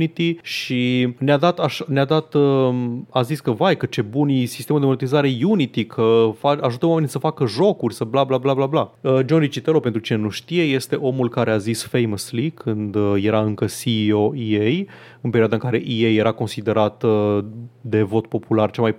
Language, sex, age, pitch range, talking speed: Romanian, male, 30-49, 115-150 Hz, 190 wpm